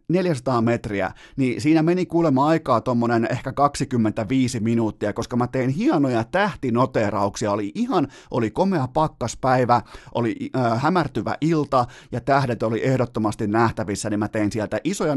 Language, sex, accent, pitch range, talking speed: Finnish, male, native, 115-145 Hz, 140 wpm